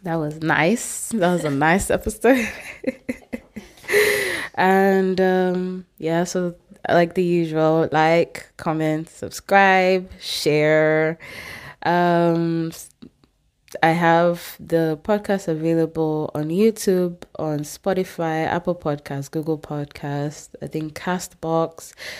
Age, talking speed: 20-39, 95 wpm